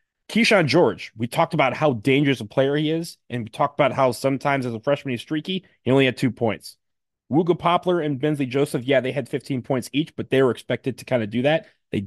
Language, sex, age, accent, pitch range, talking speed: English, male, 30-49, American, 115-140 Hz, 240 wpm